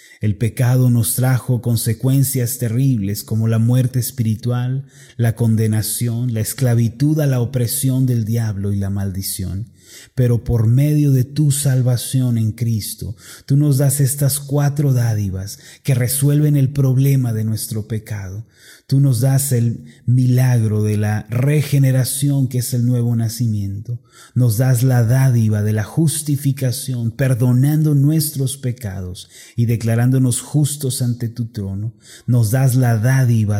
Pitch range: 110-130 Hz